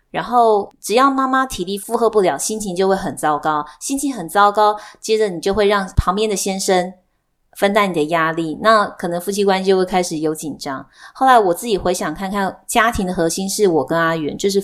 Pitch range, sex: 175-225 Hz, female